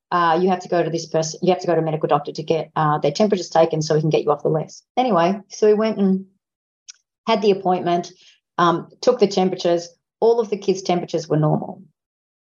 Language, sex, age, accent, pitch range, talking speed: English, female, 40-59, Australian, 165-195 Hz, 235 wpm